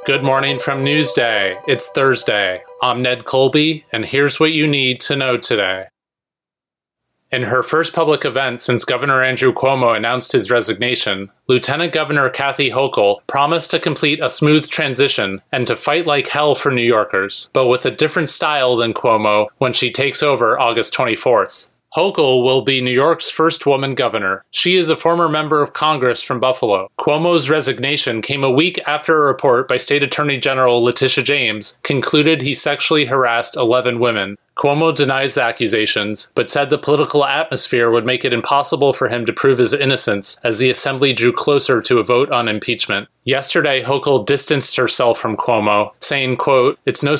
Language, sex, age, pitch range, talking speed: English, male, 30-49, 120-150 Hz, 175 wpm